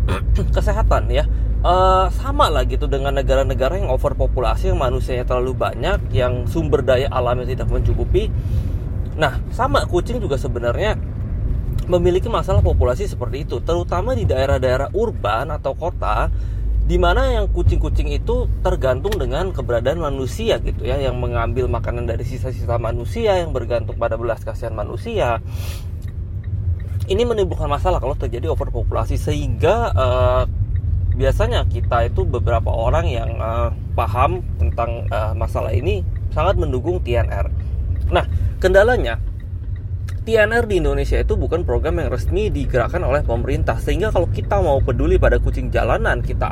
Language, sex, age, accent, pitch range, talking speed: Indonesian, male, 20-39, native, 95-120 Hz, 135 wpm